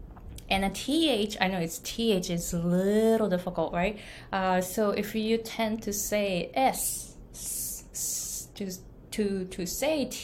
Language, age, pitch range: Japanese, 20-39, 170-215 Hz